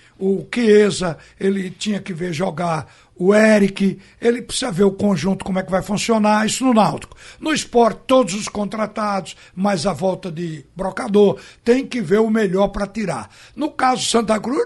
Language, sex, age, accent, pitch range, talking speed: Portuguese, male, 60-79, Brazilian, 180-240 Hz, 175 wpm